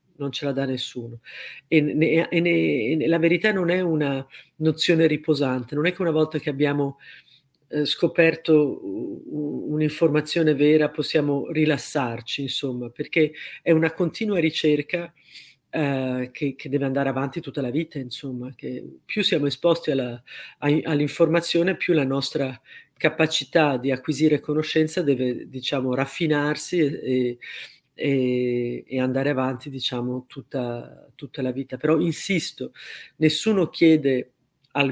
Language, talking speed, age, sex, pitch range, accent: Italian, 135 wpm, 40-59, female, 135-160 Hz, native